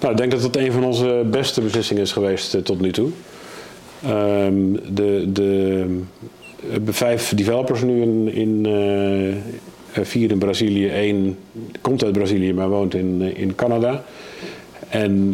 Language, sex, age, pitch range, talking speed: Dutch, male, 50-69, 100-120 Hz, 145 wpm